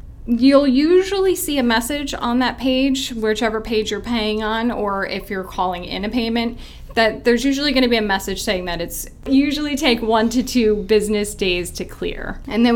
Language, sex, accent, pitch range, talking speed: English, female, American, 195-240 Hz, 195 wpm